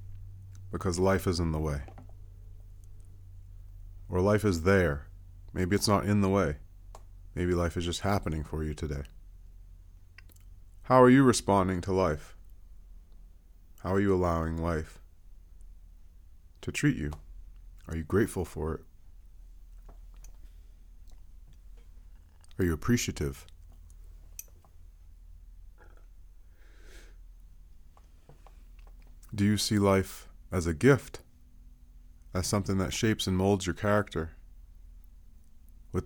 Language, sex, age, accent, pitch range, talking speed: English, male, 30-49, American, 80-100 Hz, 105 wpm